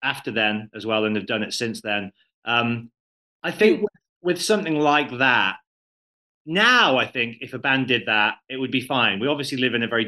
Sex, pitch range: male, 110-130 Hz